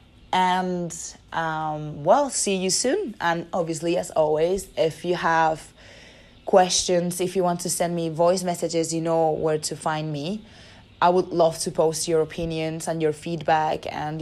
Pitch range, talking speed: 155-175 Hz, 165 wpm